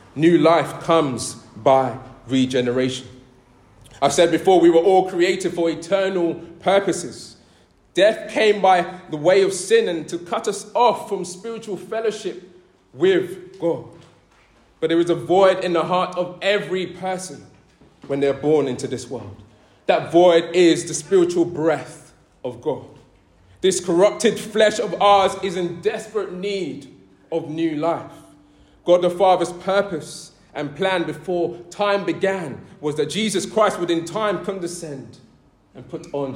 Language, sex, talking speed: English, male, 150 wpm